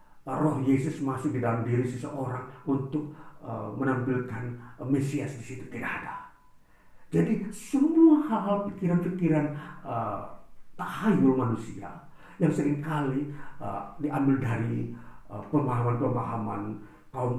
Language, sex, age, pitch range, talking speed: Indonesian, male, 50-69, 120-170 Hz, 105 wpm